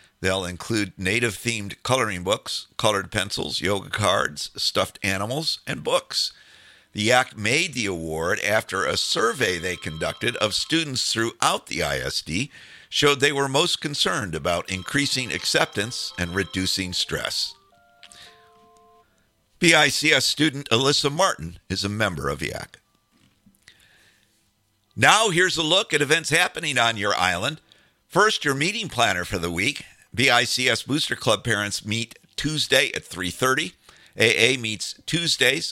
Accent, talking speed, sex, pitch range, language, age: American, 130 wpm, male, 95-135 Hz, English, 50-69